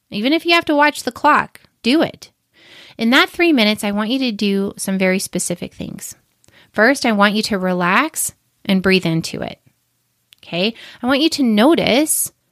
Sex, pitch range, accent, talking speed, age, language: female, 195-275 Hz, American, 185 wpm, 30-49, English